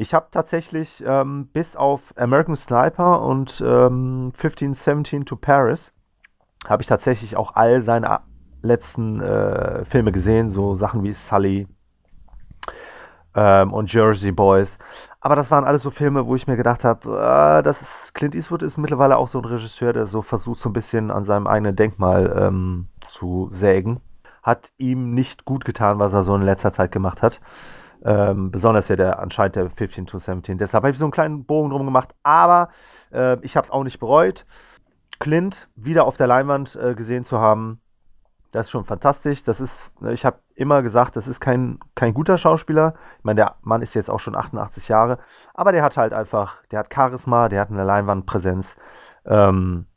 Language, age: German, 30-49